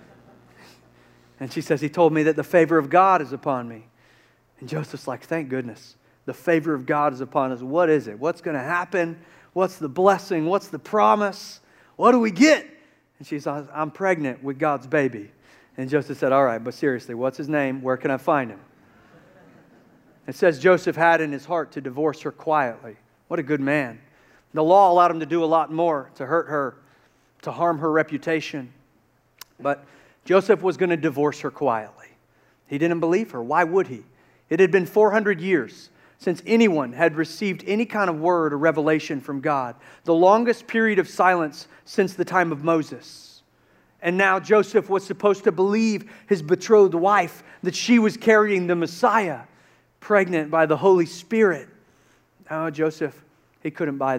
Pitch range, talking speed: 140-185 Hz, 185 wpm